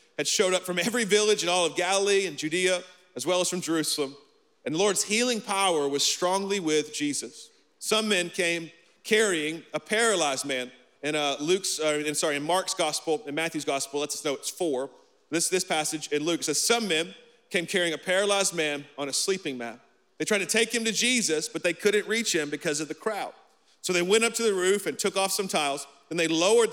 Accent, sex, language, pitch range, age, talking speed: American, male, English, 155-220 Hz, 40-59, 220 wpm